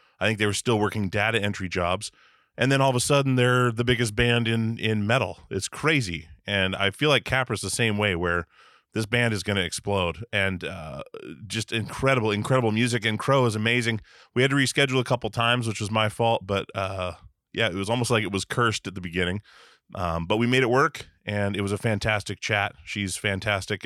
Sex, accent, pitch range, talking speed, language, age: male, American, 100-120 Hz, 220 wpm, English, 20-39